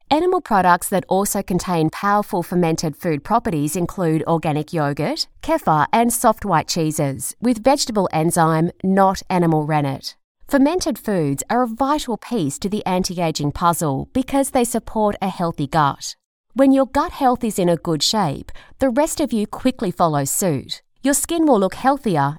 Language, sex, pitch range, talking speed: English, female, 160-250 Hz, 160 wpm